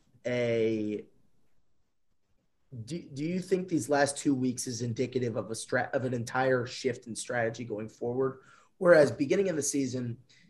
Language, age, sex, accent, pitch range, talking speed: English, 20-39, male, American, 120-145 Hz, 155 wpm